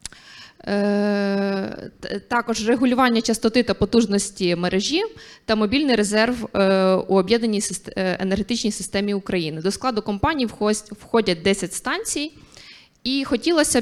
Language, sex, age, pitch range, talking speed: Ukrainian, female, 20-39, 205-255 Hz, 95 wpm